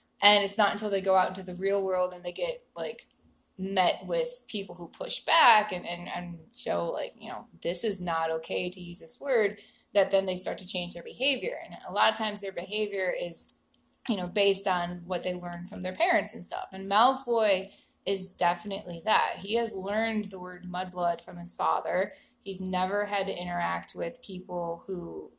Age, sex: 20-39, female